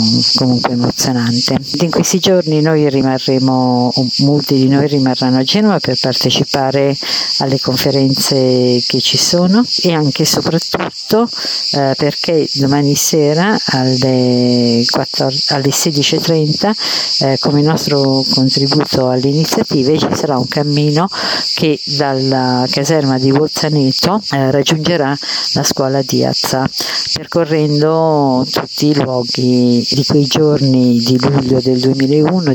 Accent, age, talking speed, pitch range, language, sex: native, 50-69, 110 wpm, 130-155 Hz, Italian, female